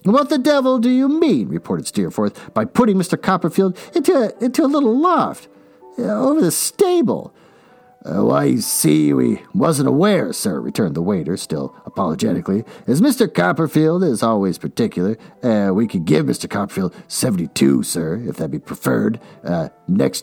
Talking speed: 155 wpm